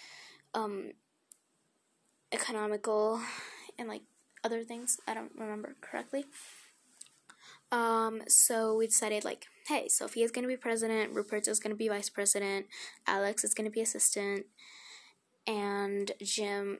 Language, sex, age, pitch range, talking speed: English, female, 10-29, 195-225 Hz, 115 wpm